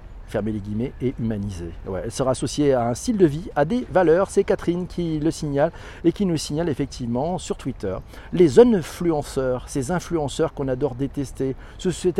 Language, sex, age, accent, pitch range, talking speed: French, male, 40-59, French, 130-175 Hz, 185 wpm